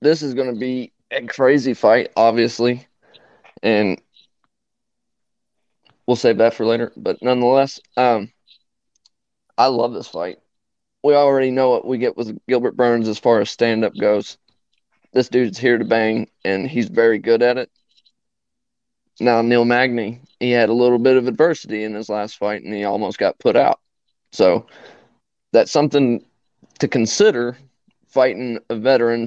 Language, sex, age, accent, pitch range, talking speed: English, male, 20-39, American, 115-130 Hz, 155 wpm